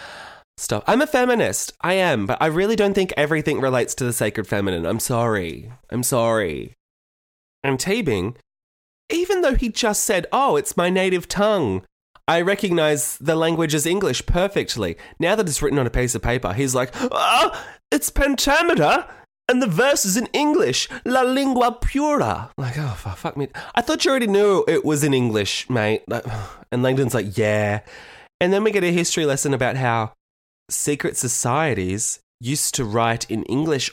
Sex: male